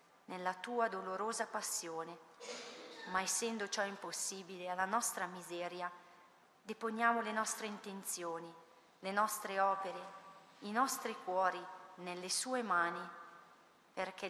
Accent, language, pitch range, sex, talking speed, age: native, Italian, 175-215 Hz, female, 105 wpm, 40-59